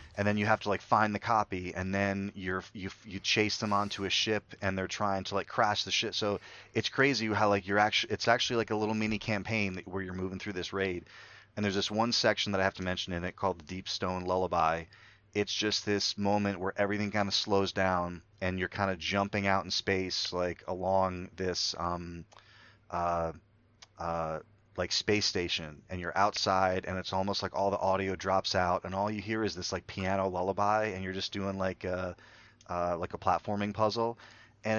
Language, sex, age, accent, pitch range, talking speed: English, male, 30-49, American, 95-105 Hz, 210 wpm